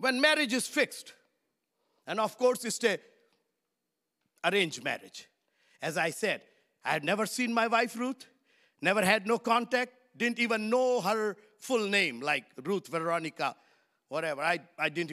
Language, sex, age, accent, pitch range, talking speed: English, male, 50-69, Indian, 160-235 Hz, 150 wpm